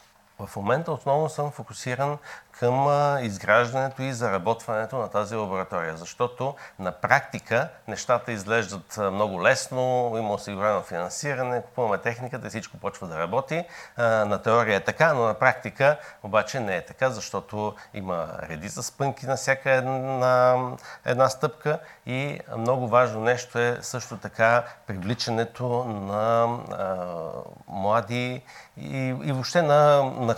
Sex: male